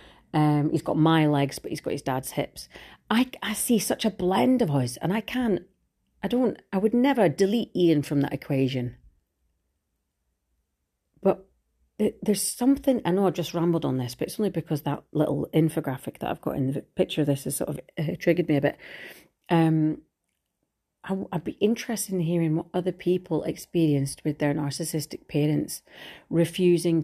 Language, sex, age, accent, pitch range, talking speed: English, female, 40-59, British, 150-185 Hz, 180 wpm